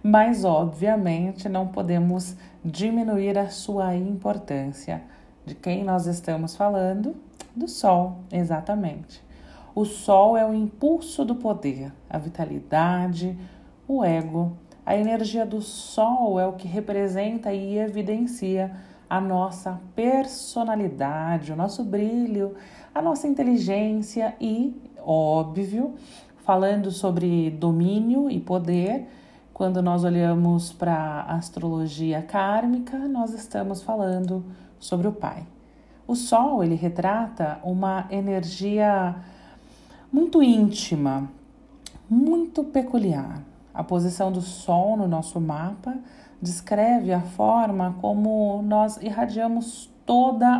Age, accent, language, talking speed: 40-59, Brazilian, Portuguese, 105 wpm